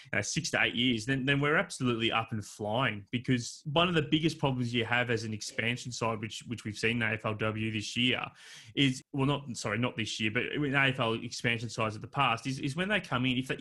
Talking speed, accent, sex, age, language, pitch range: 240 wpm, Australian, male, 20-39, English, 110-140 Hz